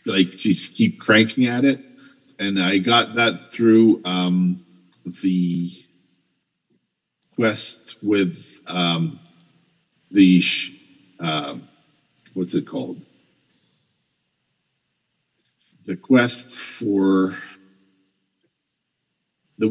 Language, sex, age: English, male, 50-69